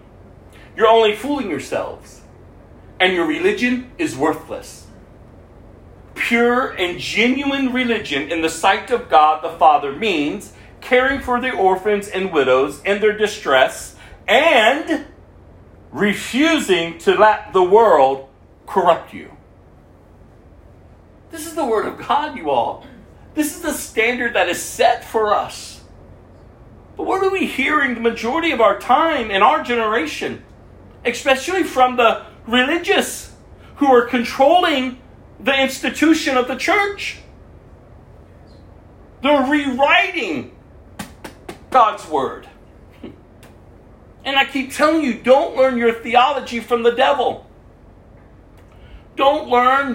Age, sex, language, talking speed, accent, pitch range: 40-59, male, English, 120 wpm, American, 180-275 Hz